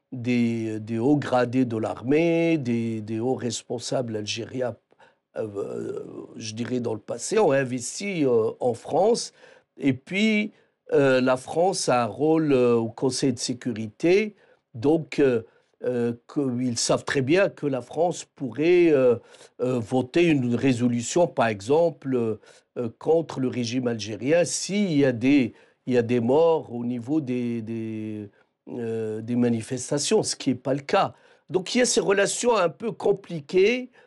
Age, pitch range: 50-69, 125-205 Hz